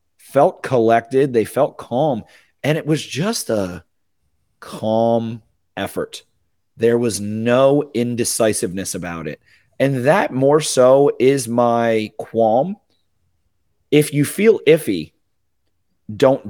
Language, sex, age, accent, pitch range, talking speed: English, male, 30-49, American, 105-135 Hz, 110 wpm